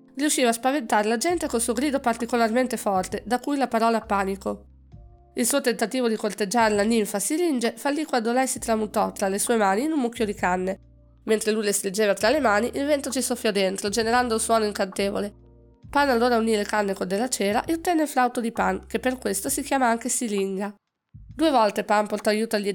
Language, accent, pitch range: Italian, native, 205-250 Hz